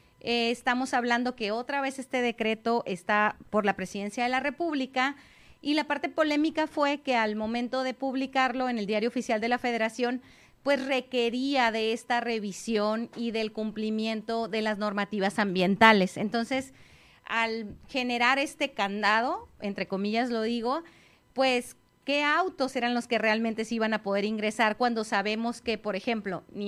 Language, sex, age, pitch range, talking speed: Spanish, female, 30-49, 220-270 Hz, 160 wpm